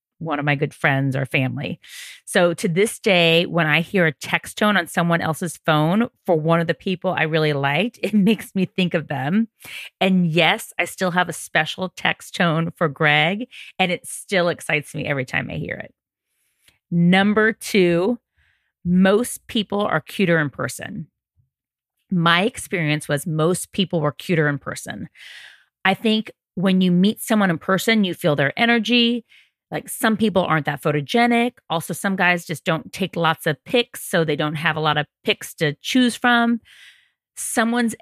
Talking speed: 175 wpm